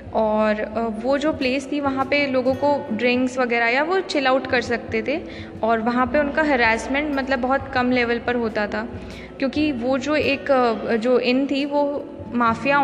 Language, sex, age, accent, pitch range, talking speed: Hindi, female, 20-39, native, 235-275 Hz, 180 wpm